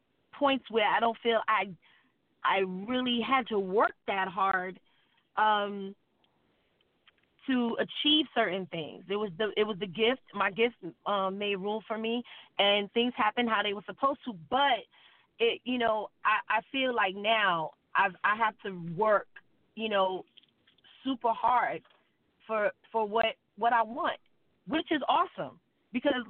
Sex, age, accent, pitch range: female, 30-49, American, 200-245 Hz